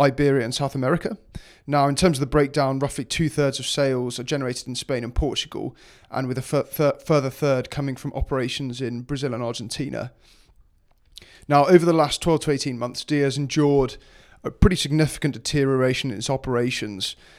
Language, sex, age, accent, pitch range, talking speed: English, male, 30-49, British, 130-145 Hz, 180 wpm